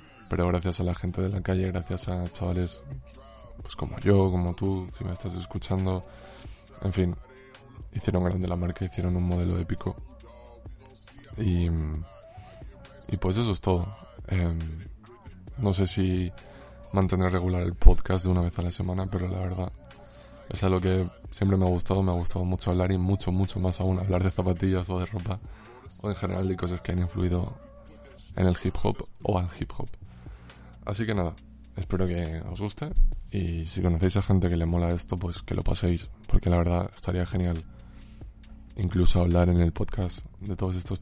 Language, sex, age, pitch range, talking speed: Spanish, male, 20-39, 90-100 Hz, 185 wpm